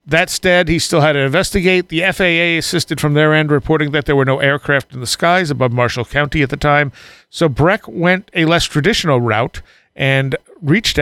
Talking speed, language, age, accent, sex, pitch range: 200 wpm, English, 50-69, American, male, 135-165 Hz